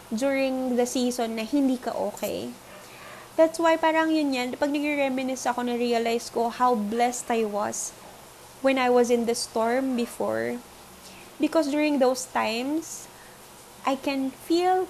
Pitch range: 235-285 Hz